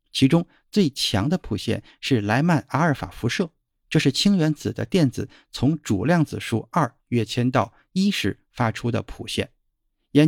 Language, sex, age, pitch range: Chinese, male, 50-69, 115-150 Hz